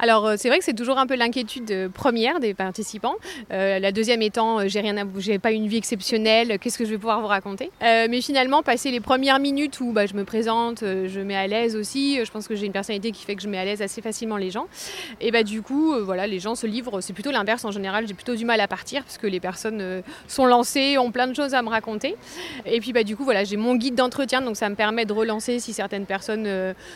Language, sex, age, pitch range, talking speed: French, female, 30-49, 205-250 Hz, 265 wpm